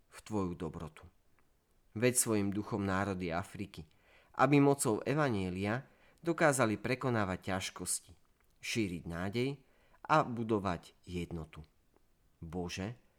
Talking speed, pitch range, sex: 90 wpm, 90-115 Hz, male